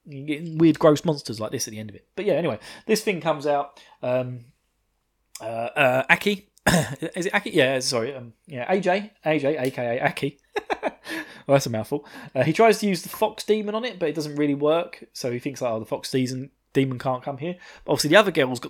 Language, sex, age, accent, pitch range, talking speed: English, male, 20-39, British, 125-170 Hz, 220 wpm